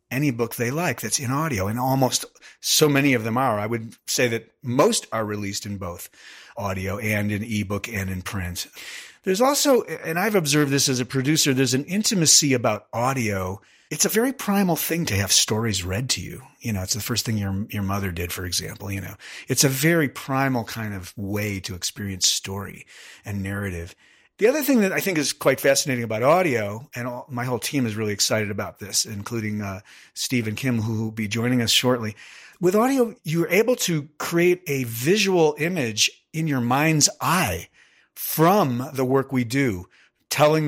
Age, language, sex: 40-59, English, male